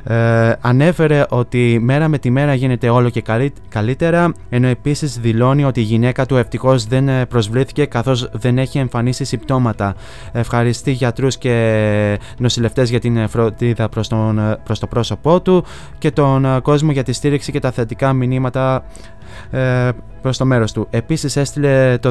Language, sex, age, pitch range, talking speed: Greek, male, 20-39, 120-140 Hz, 145 wpm